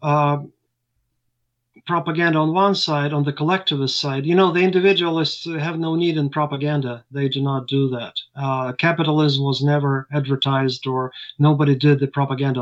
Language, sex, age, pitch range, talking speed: English, male, 30-49, 130-150 Hz, 155 wpm